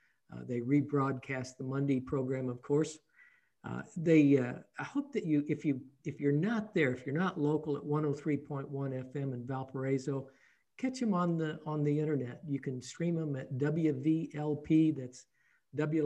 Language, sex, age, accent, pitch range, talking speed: English, male, 60-79, American, 135-165 Hz, 170 wpm